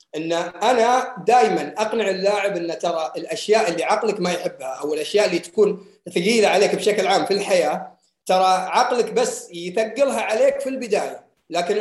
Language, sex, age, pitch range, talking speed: Arabic, male, 30-49, 180-245 Hz, 150 wpm